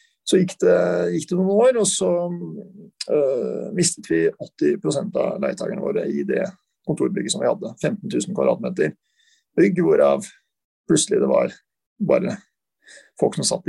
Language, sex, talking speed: English, male, 155 wpm